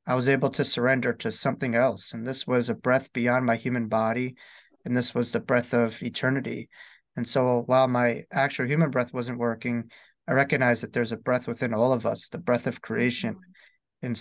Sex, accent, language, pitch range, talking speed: male, American, English, 120-135 Hz, 205 wpm